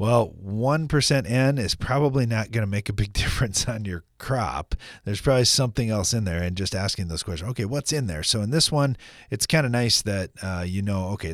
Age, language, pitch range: 30-49, English, 90-125 Hz